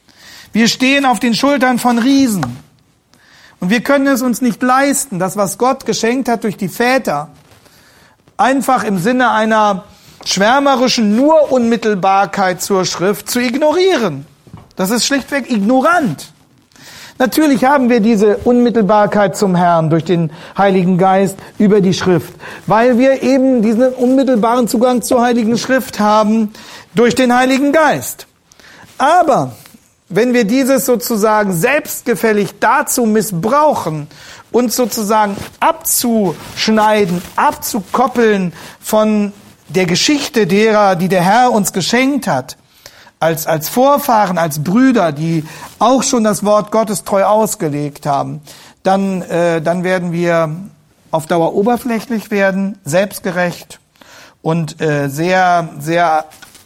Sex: male